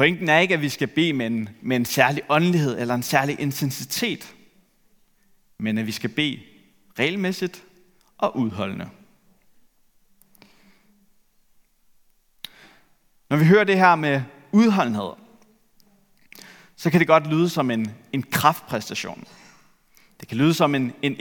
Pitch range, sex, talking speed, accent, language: 135-200 Hz, male, 130 wpm, native, Danish